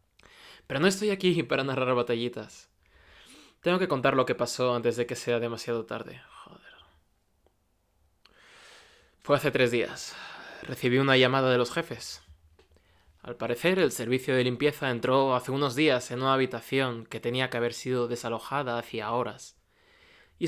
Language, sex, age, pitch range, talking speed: Spanish, male, 20-39, 115-140 Hz, 150 wpm